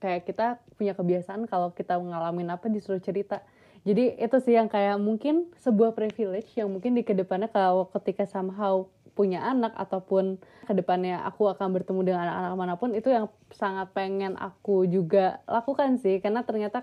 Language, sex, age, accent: Indonesian, female, 20-39, native